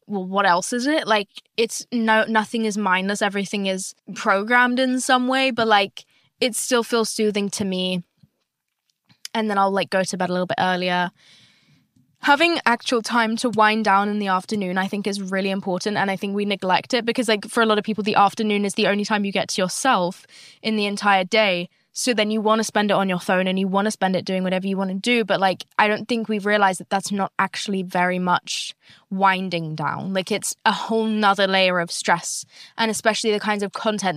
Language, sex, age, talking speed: English, female, 10-29, 225 wpm